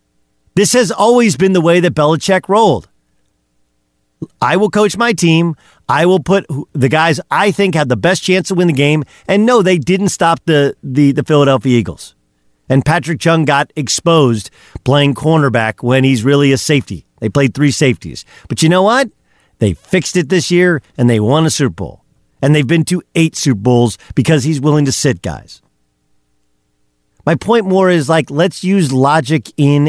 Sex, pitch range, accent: male, 120-170 Hz, American